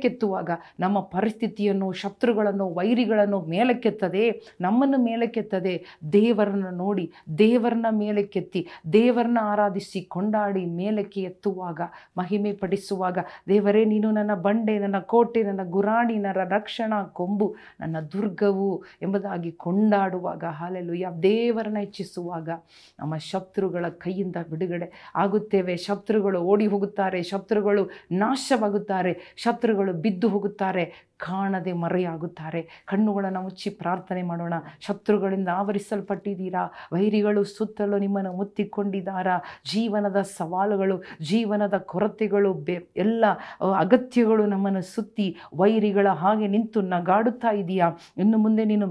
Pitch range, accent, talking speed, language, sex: 185-215 Hz, native, 95 wpm, Kannada, female